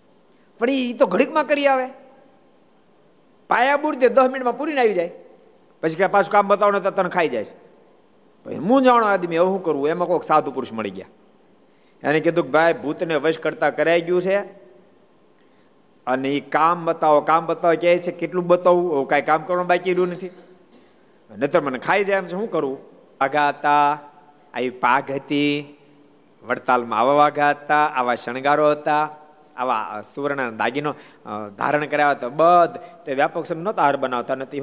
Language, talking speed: Gujarati, 105 wpm